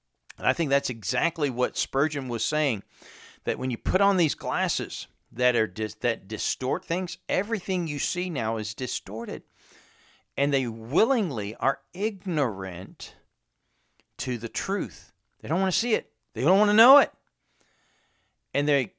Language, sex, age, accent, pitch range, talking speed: English, male, 40-59, American, 110-145 Hz, 160 wpm